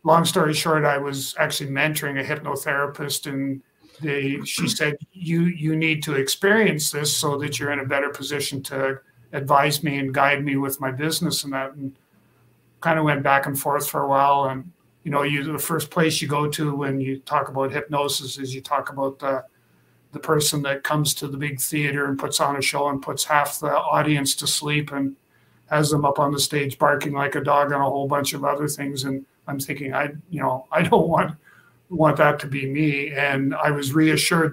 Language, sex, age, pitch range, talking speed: English, male, 50-69, 140-150 Hz, 215 wpm